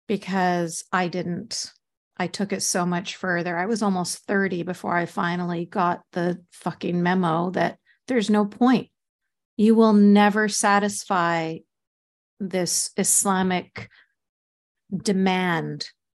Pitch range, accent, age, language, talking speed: 180-225 Hz, American, 50-69, English, 115 wpm